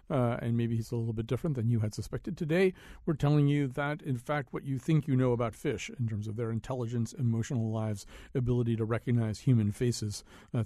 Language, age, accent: English, 50-69, American